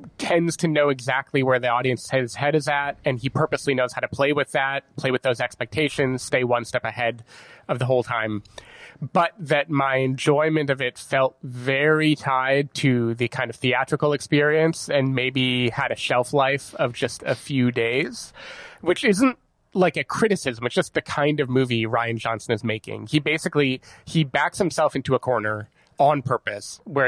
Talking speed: 185 wpm